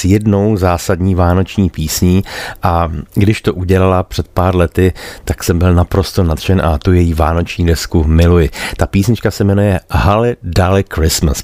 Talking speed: 150 wpm